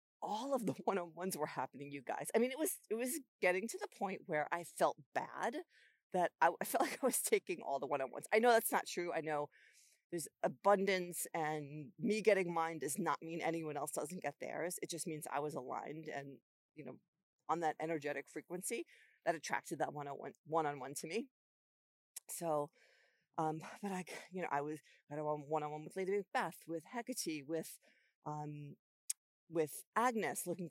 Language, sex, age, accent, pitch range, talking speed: English, female, 40-59, American, 155-200 Hz, 180 wpm